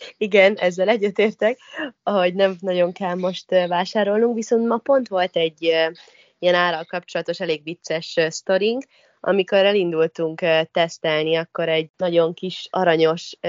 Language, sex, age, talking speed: Hungarian, female, 20-39, 125 wpm